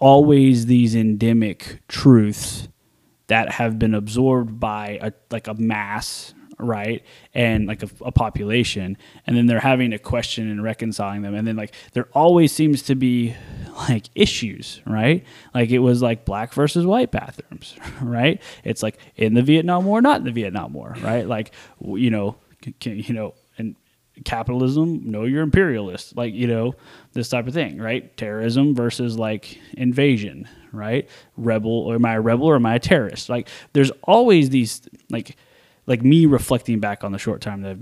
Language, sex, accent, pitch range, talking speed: English, male, American, 110-130 Hz, 175 wpm